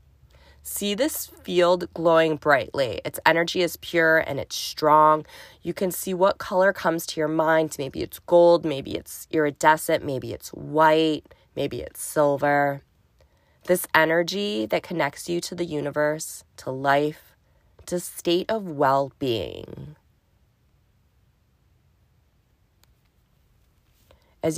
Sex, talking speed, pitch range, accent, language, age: female, 115 wpm, 140-170 Hz, American, English, 20-39